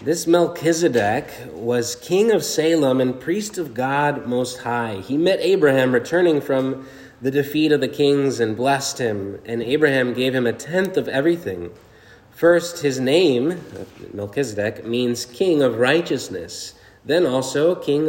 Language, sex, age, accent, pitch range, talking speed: English, male, 30-49, American, 115-145 Hz, 145 wpm